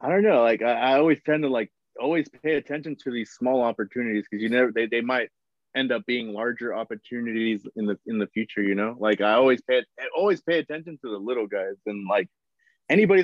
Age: 20-39